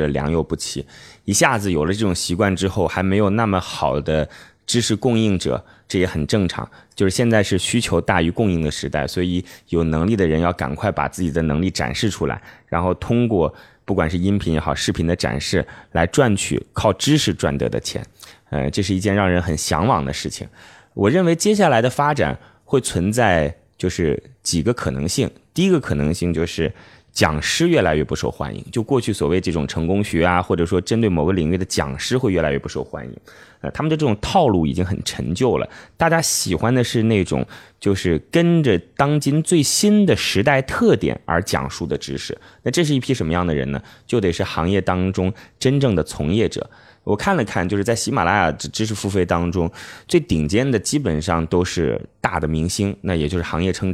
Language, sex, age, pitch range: Chinese, male, 20-39, 80-115 Hz